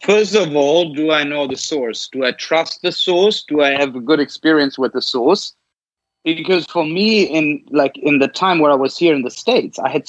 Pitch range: 135-170 Hz